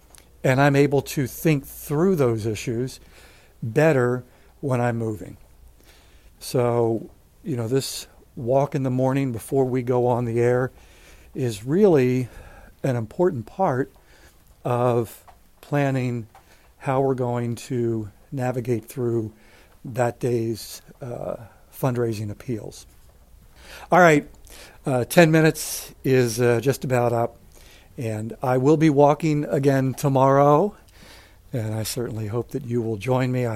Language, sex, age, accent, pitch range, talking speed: English, male, 60-79, American, 120-140 Hz, 125 wpm